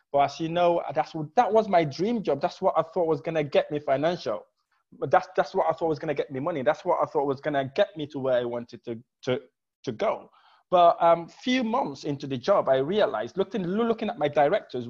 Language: English